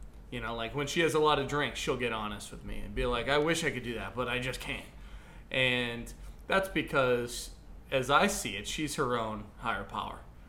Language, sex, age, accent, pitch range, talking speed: English, male, 20-39, American, 105-135 Hz, 230 wpm